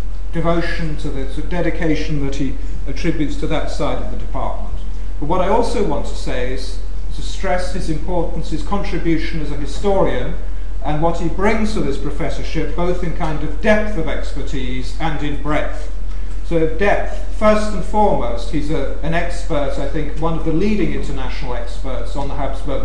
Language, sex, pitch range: English, male, 130-165 Hz